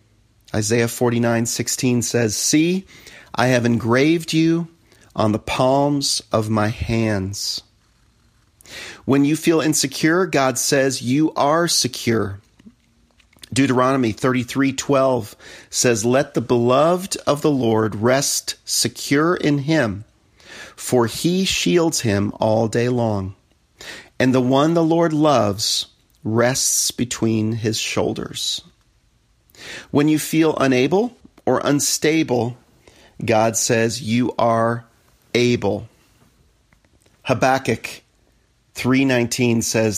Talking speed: 105 wpm